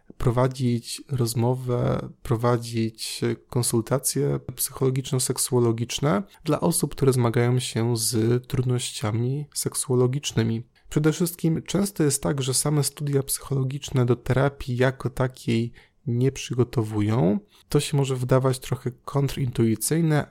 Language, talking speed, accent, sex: Polish, 100 wpm, native, male